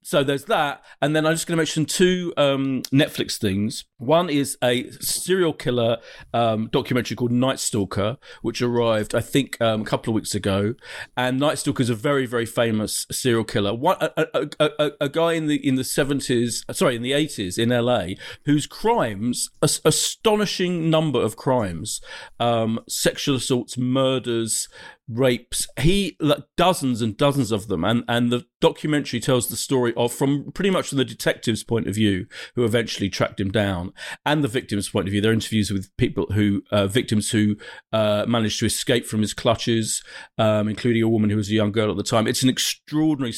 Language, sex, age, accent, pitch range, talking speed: English, male, 40-59, British, 110-145 Hz, 190 wpm